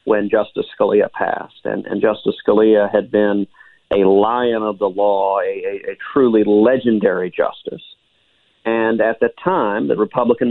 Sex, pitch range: male, 110-130 Hz